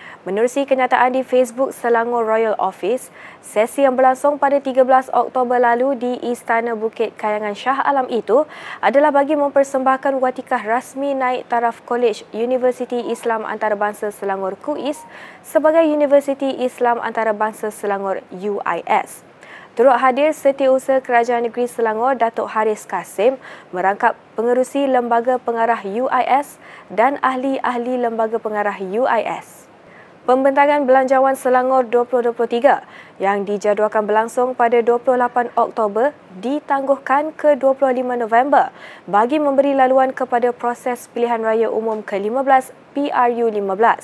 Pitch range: 230-270 Hz